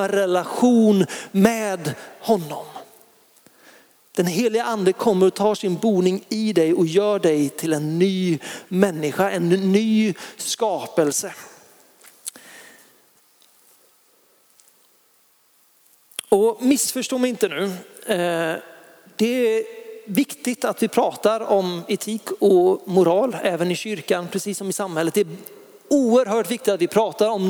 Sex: male